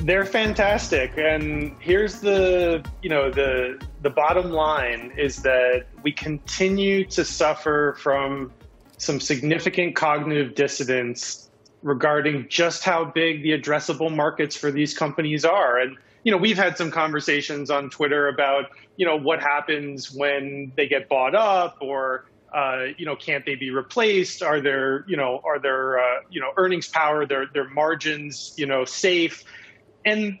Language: English